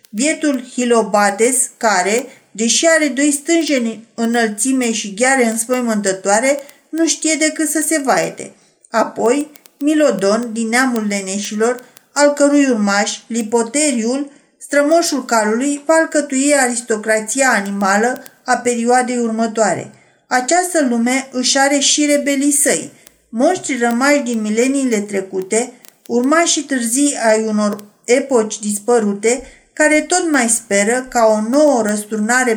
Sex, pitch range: female, 225-280 Hz